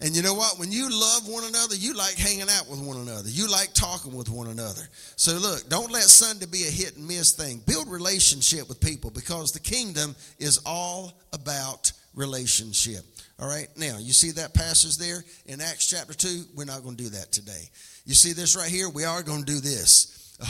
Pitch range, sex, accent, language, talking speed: 145-190 Hz, male, American, English, 220 wpm